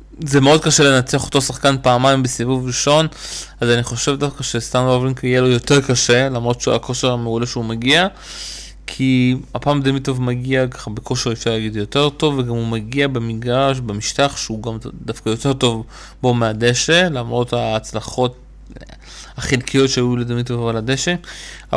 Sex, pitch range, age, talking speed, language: male, 120-135 Hz, 20-39, 150 wpm, Hebrew